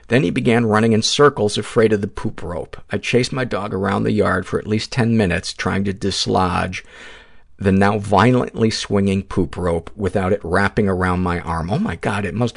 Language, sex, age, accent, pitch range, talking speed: English, male, 50-69, American, 90-110 Hz, 205 wpm